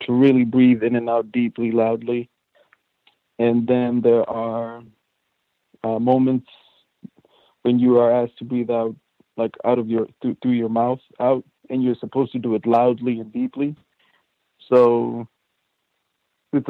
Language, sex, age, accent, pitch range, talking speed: English, male, 40-59, American, 115-130 Hz, 145 wpm